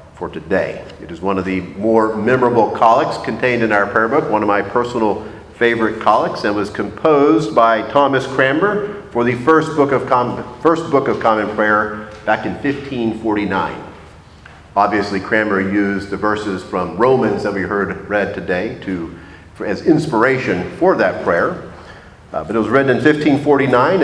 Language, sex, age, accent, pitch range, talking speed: English, male, 40-59, American, 100-135 Hz, 160 wpm